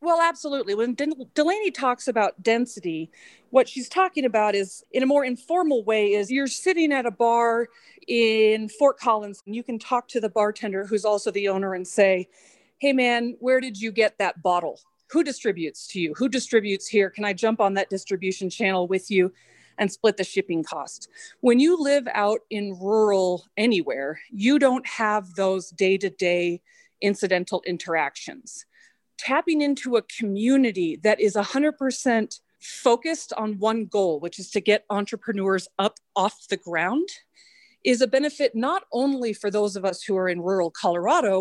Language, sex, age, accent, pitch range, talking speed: English, female, 40-59, American, 195-275 Hz, 170 wpm